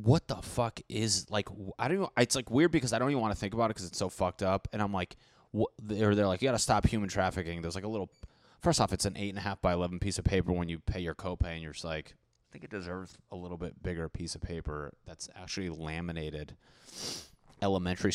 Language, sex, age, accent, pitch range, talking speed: English, male, 20-39, American, 90-120 Hz, 260 wpm